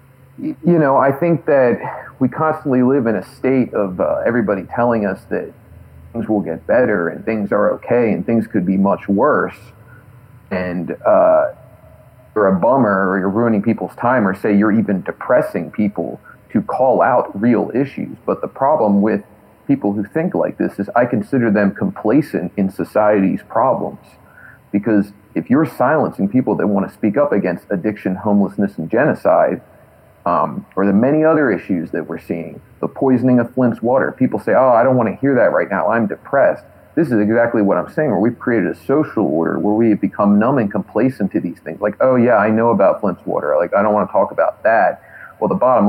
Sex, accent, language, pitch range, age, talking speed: male, American, English, 100-130 Hz, 40-59, 195 wpm